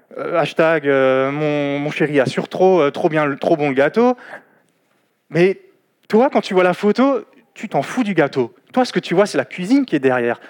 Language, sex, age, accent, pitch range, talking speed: French, male, 20-39, French, 155-205 Hz, 225 wpm